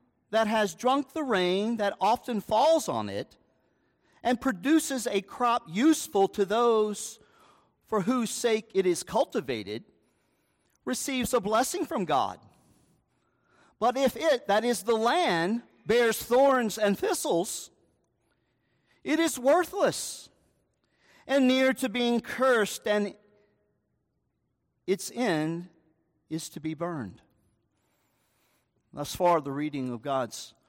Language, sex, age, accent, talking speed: English, male, 50-69, American, 115 wpm